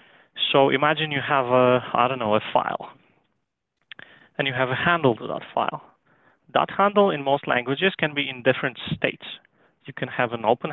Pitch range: 120-150 Hz